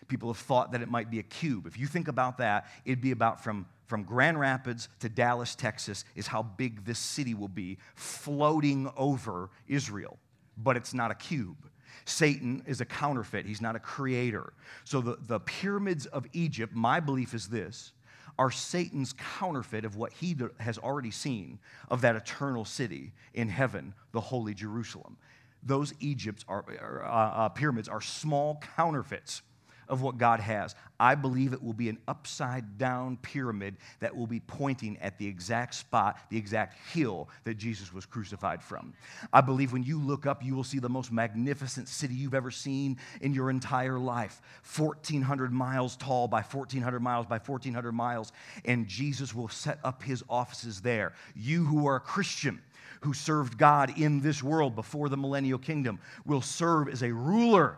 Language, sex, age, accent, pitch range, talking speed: English, male, 40-59, American, 115-140 Hz, 175 wpm